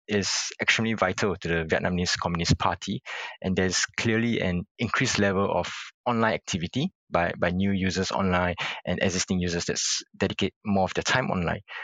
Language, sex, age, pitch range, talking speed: English, male, 20-39, 90-110 Hz, 160 wpm